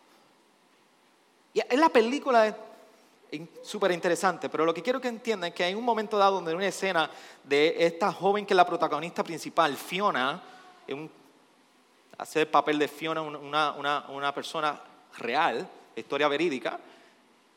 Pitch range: 160-215 Hz